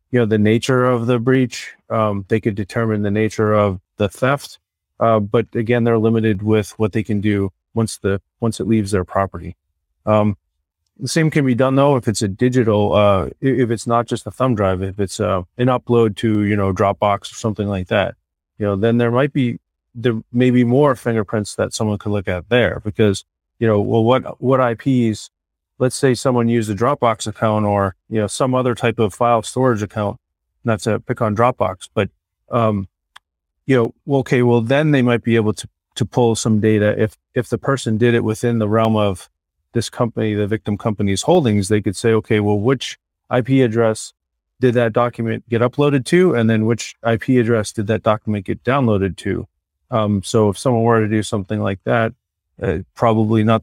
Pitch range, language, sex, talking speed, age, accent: 100-120 Hz, English, male, 205 wpm, 30-49, American